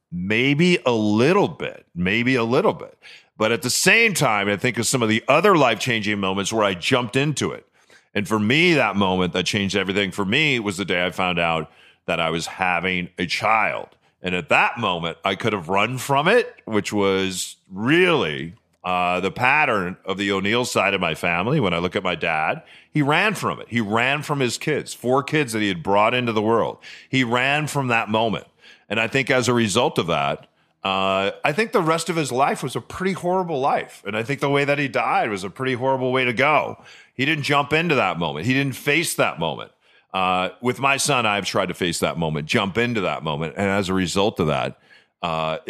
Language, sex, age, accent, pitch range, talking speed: English, male, 40-59, American, 95-135 Hz, 220 wpm